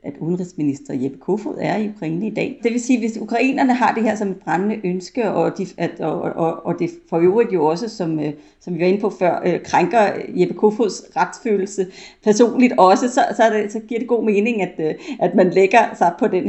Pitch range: 165-220 Hz